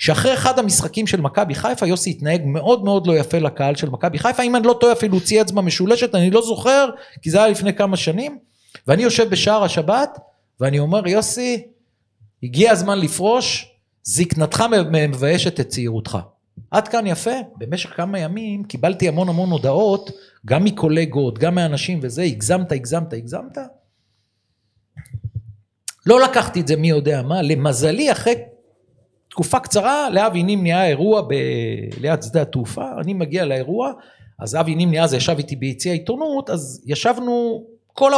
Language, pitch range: Hebrew, 140-215 Hz